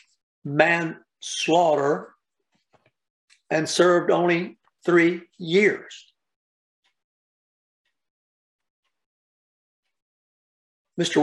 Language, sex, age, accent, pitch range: English, male, 60-79, American, 145-180 Hz